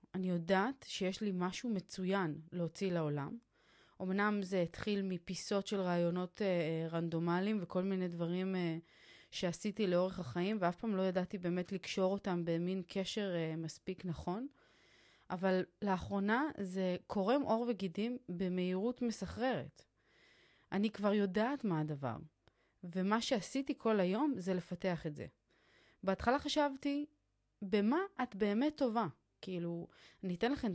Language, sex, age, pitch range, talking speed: Hebrew, female, 30-49, 175-225 Hz, 125 wpm